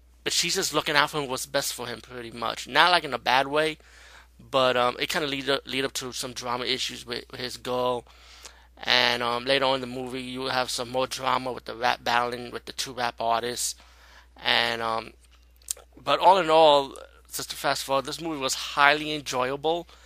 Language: English